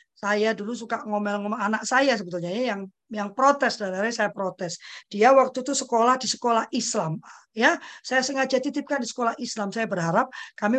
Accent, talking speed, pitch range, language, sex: native, 170 wpm, 210-310 Hz, Indonesian, female